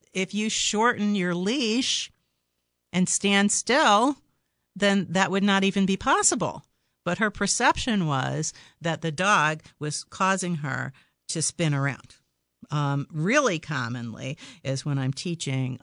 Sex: female